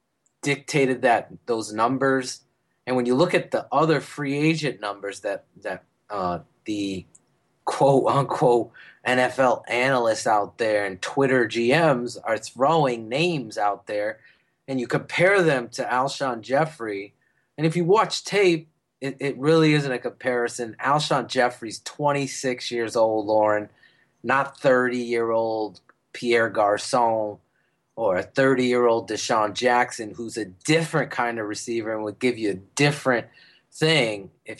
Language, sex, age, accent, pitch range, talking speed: English, male, 30-49, American, 115-140 Hz, 135 wpm